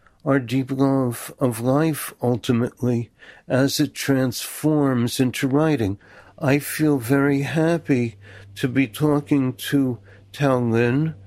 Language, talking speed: English, 110 wpm